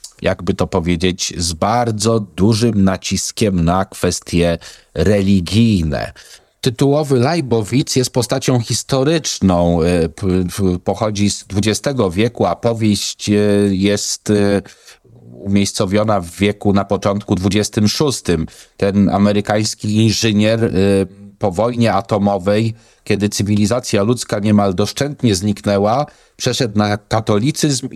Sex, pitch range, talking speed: male, 100-125 Hz, 90 wpm